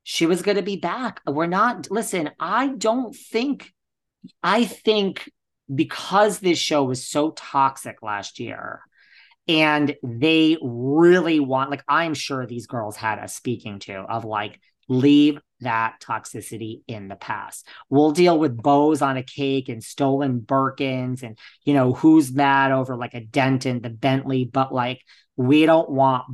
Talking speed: 155 wpm